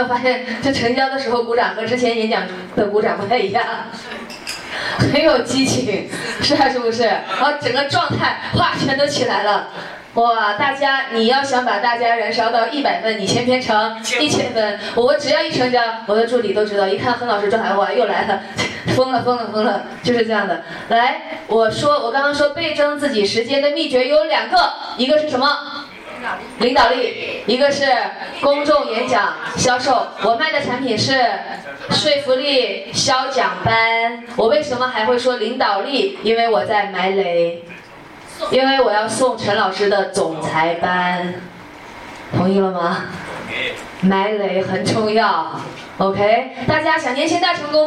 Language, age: Chinese, 20-39